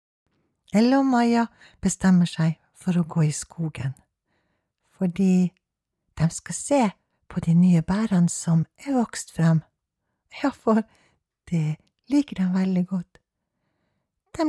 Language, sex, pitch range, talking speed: Danish, female, 180-305 Hz, 120 wpm